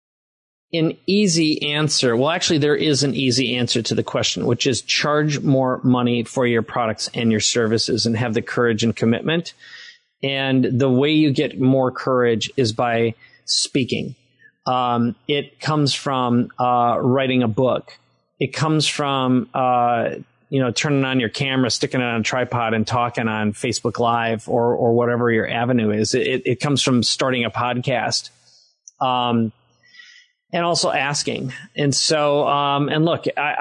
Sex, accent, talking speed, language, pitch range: male, American, 160 wpm, English, 120-145 Hz